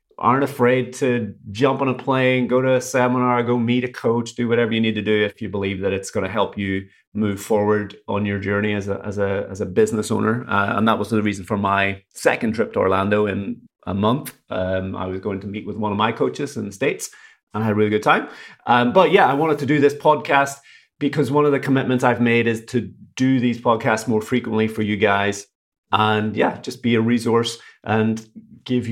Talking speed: 235 wpm